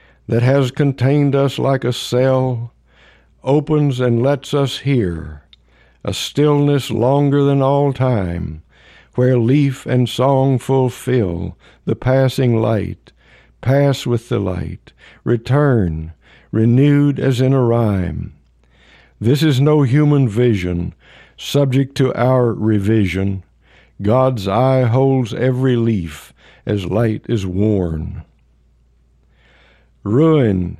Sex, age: male, 60-79